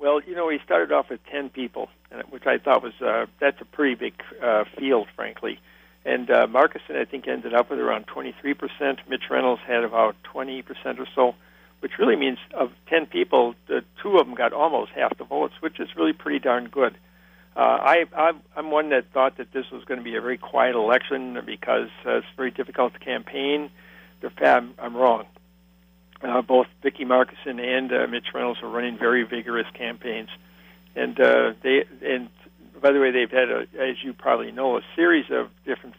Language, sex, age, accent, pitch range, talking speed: English, male, 60-79, American, 115-140 Hz, 190 wpm